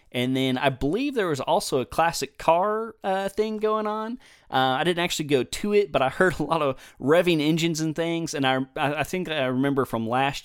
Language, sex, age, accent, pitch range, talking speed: English, male, 30-49, American, 120-155 Hz, 225 wpm